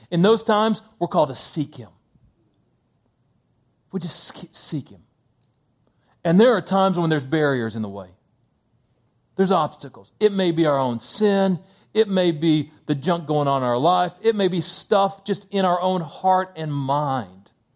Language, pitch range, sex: English, 120-165 Hz, male